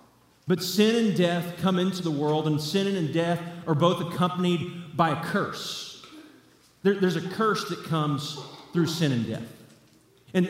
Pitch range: 165-200 Hz